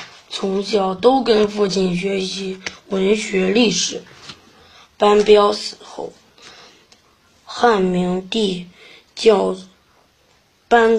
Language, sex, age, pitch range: Chinese, female, 20-39, 195-230 Hz